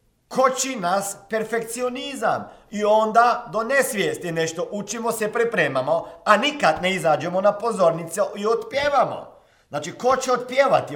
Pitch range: 185-250 Hz